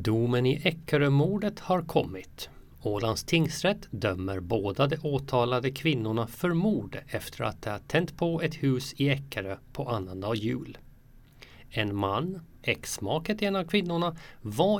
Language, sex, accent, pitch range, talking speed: Swedish, male, native, 115-165 Hz, 140 wpm